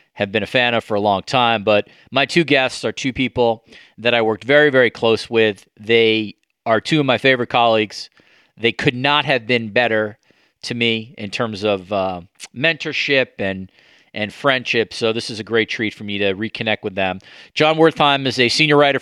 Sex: male